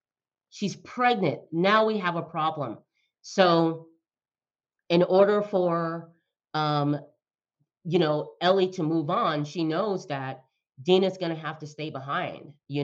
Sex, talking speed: female, 135 wpm